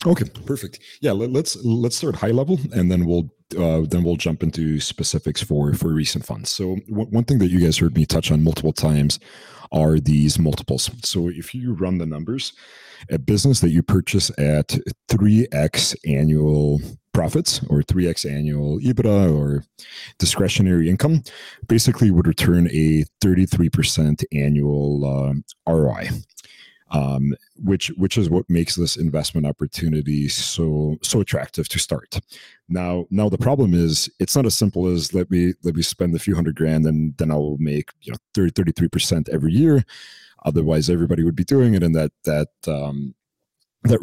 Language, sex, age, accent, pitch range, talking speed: English, male, 40-59, American, 75-105 Hz, 165 wpm